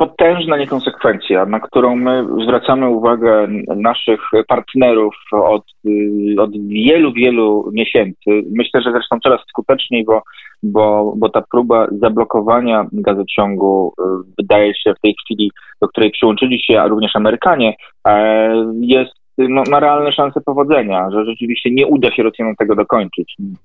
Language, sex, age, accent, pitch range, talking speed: Polish, male, 20-39, native, 110-130 Hz, 130 wpm